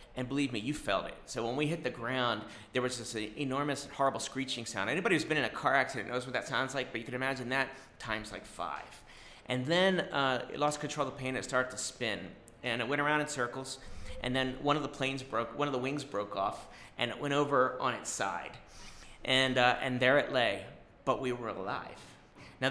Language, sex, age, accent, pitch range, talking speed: English, male, 30-49, American, 115-145 Hz, 240 wpm